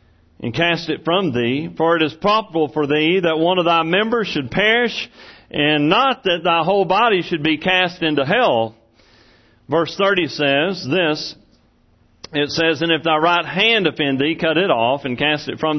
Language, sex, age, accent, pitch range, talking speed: English, male, 40-59, American, 135-170 Hz, 185 wpm